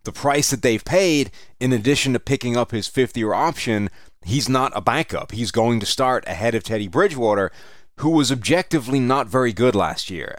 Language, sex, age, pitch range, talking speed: English, male, 30-49, 105-135 Hz, 195 wpm